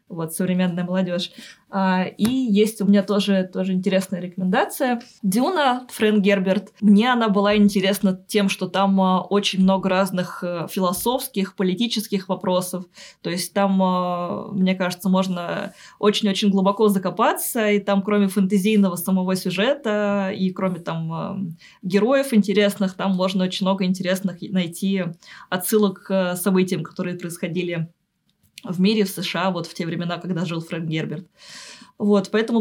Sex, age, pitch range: female, 20-39, 185-210 Hz